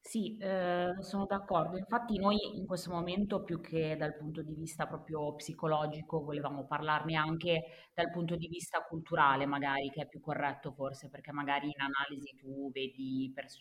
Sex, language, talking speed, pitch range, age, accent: female, Italian, 170 wpm, 140-160 Hz, 30-49, native